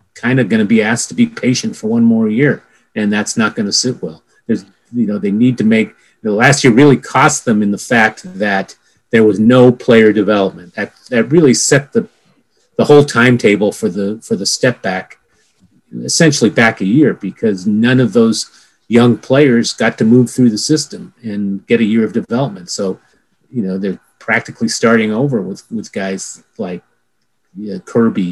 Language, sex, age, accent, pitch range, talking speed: English, male, 40-59, American, 95-125 Hz, 190 wpm